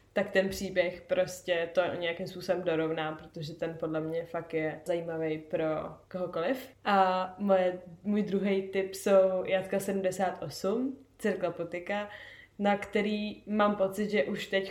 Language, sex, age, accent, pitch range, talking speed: Czech, female, 20-39, native, 180-195 Hz, 140 wpm